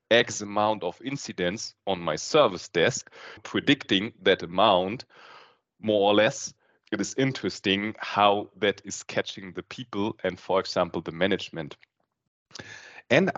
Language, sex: English, male